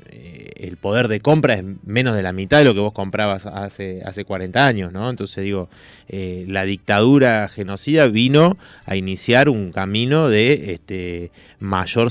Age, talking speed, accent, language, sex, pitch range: 30-49, 170 wpm, Argentinian, Spanish, male, 95-115 Hz